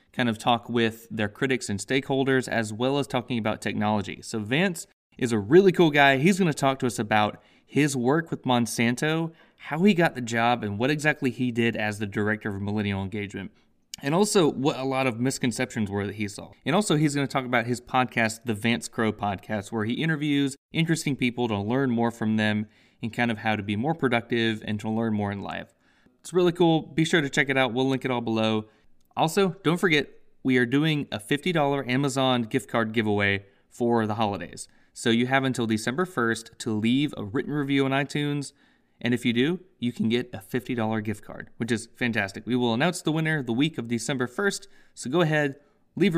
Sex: male